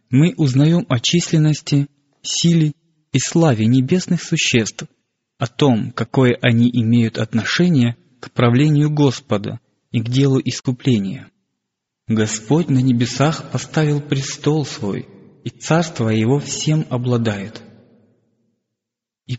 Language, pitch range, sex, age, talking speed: Russian, 115-150 Hz, male, 20-39, 105 wpm